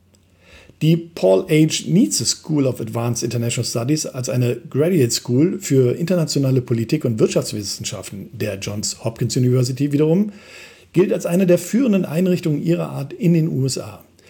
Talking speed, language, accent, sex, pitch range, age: 145 wpm, German, German, male, 125-175 Hz, 50-69